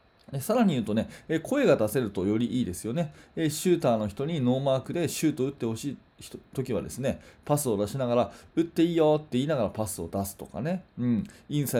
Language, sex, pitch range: Japanese, male, 105-160 Hz